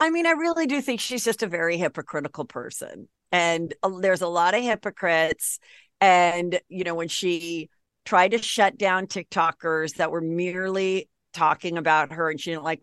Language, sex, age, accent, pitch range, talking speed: English, female, 50-69, American, 170-240 Hz, 185 wpm